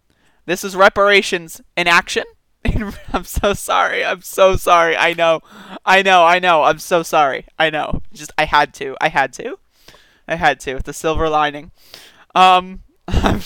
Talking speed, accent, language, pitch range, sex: 170 wpm, American, English, 155-205 Hz, male